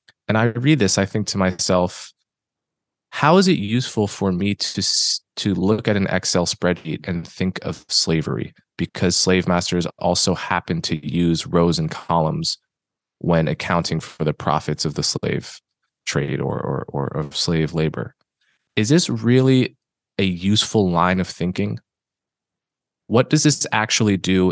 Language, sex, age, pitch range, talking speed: English, male, 20-39, 85-105 Hz, 155 wpm